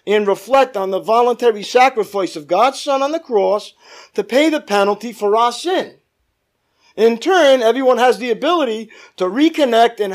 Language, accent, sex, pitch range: English, American, male, 205-305 Hz